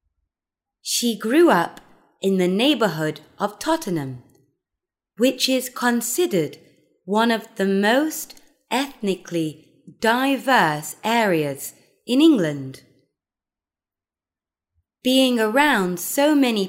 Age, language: 20-39, Thai